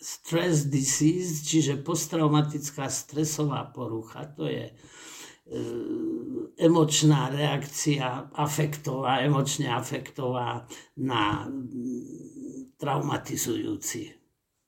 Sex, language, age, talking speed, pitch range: male, Slovak, 60-79, 60 wpm, 120-150 Hz